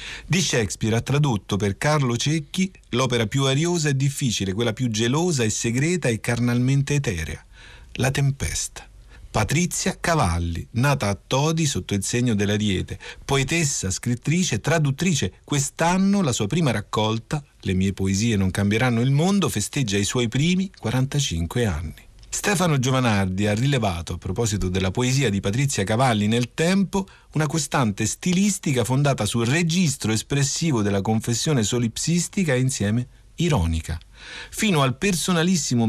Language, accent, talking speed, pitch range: Italian, native, 135 wpm, 110-155 Hz